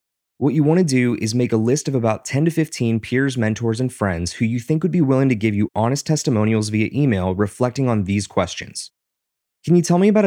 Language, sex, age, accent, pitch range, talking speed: English, male, 20-39, American, 110-145 Hz, 235 wpm